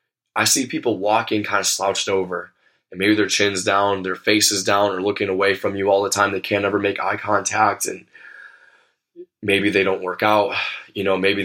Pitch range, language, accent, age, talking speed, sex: 100-115 Hz, English, American, 20-39, 205 wpm, male